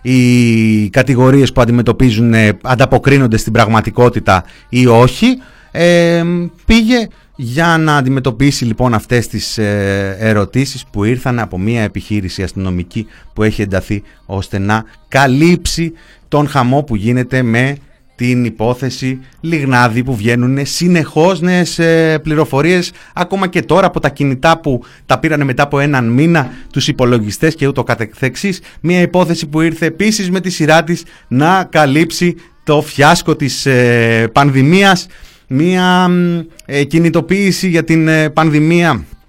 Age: 30-49